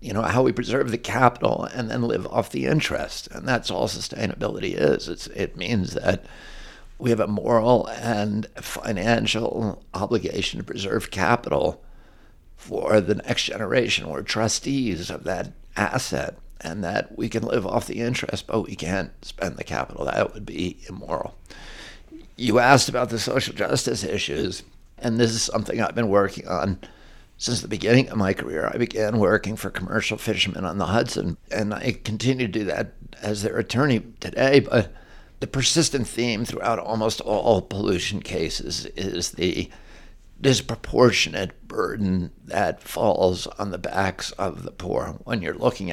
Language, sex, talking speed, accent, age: English, male, 160 wpm, American, 60-79